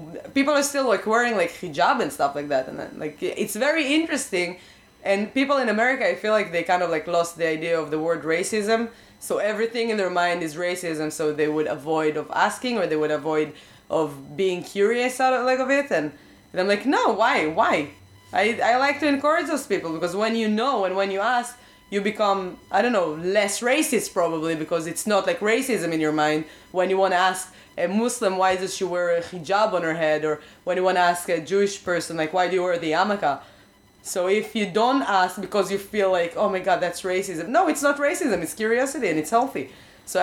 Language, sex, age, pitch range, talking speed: English, female, 20-39, 170-220 Hz, 230 wpm